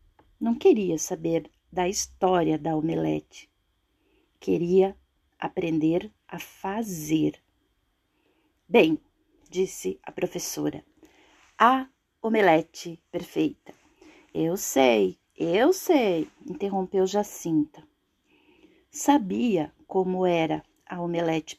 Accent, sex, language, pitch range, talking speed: Brazilian, female, Portuguese, 165-235 Hz, 80 wpm